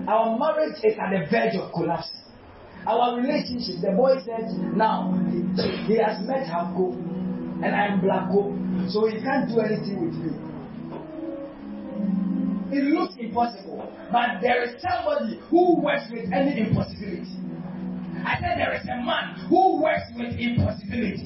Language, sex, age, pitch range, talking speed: English, male, 30-49, 195-275 Hz, 145 wpm